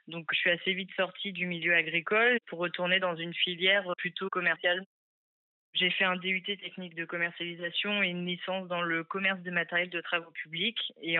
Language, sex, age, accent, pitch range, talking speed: French, female, 20-39, French, 170-190 Hz, 190 wpm